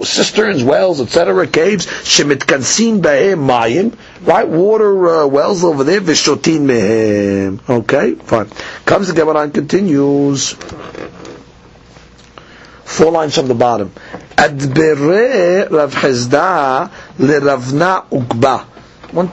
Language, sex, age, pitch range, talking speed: English, male, 50-69, 130-190 Hz, 75 wpm